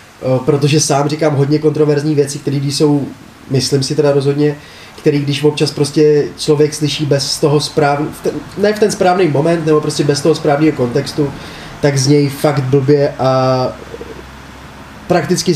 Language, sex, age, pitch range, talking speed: Czech, male, 20-39, 140-165 Hz, 150 wpm